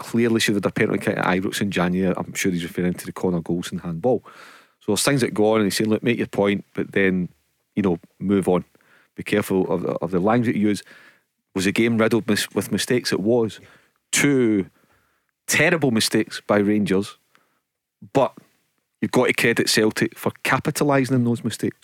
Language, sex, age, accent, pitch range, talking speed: English, male, 30-49, British, 95-115 Hz, 200 wpm